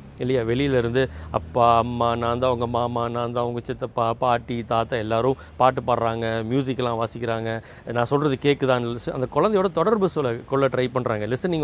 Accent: native